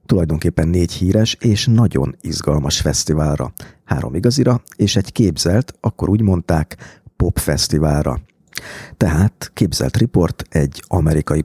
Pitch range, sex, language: 80-110 Hz, male, Hungarian